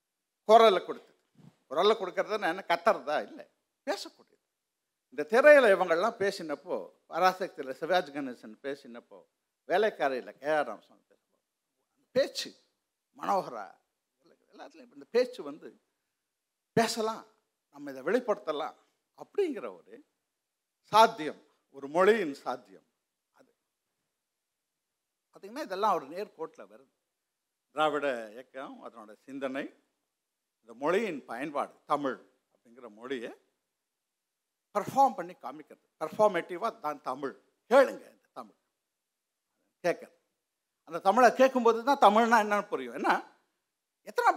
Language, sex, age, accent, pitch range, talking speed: Tamil, male, 50-69, native, 155-245 Hz, 95 wpm